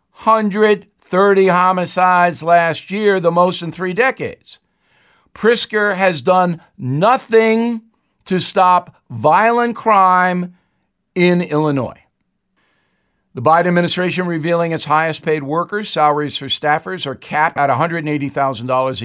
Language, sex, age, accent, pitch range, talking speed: English, male, 60-79, American, 150-185 Hz, 105 wpm